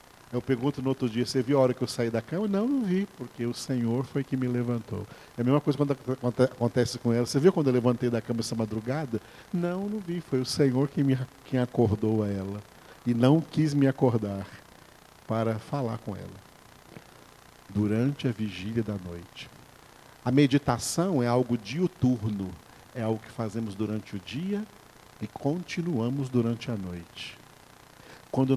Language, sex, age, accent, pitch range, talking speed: Portuguese, male, 50-69, Brazilian, 110-135 Hz, 175 wpm